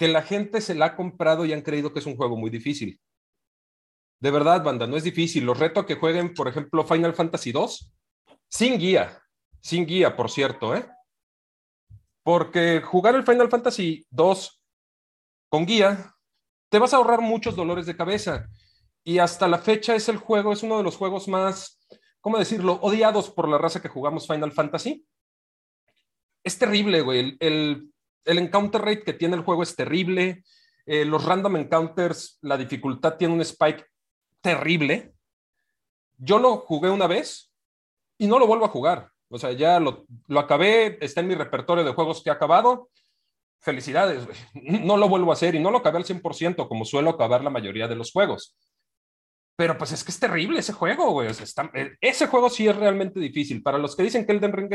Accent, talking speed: Mexican, 190 wpm